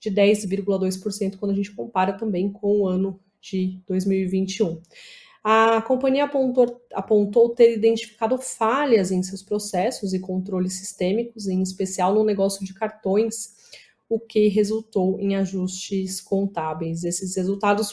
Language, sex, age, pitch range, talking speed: Portuguese, female, 20-39, 190-220 Hz, 130 wpm